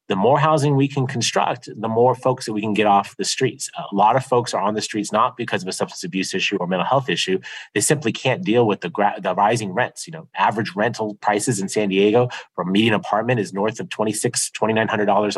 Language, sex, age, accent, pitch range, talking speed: English, male, 30-49, American, 100-125 Hz, 245 wpm